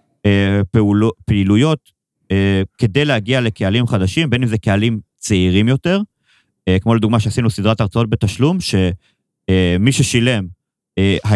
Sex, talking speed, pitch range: male, 125 wpm, 100-125 Hz